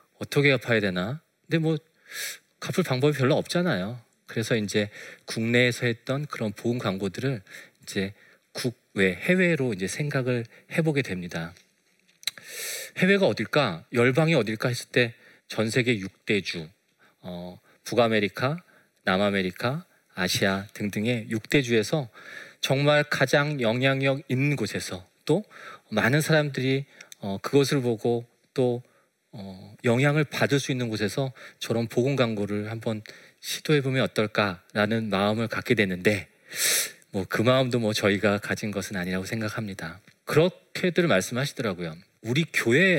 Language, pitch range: Korean, 100-140 Hz